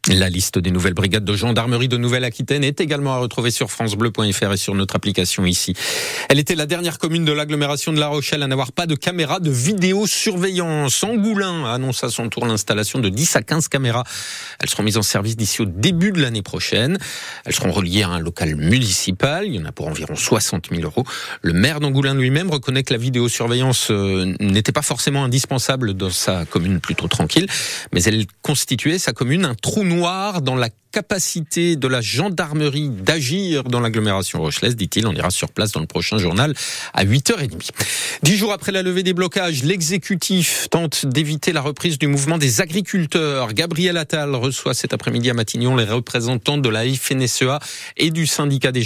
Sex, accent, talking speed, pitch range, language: male, French, 190 wpm, 110-155 Hz, French